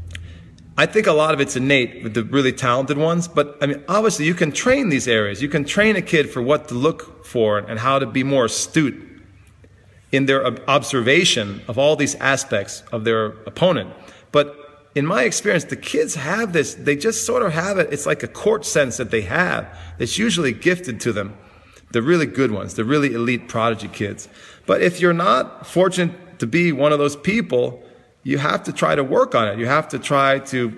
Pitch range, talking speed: 115-150 Hz, 210 wpm